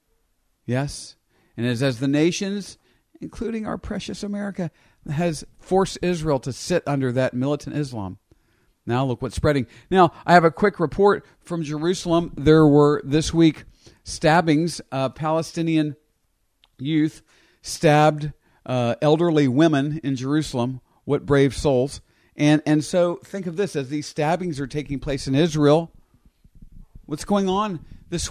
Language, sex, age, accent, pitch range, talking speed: English, male, 50-69, American, 135-165 Hz, 140 wpm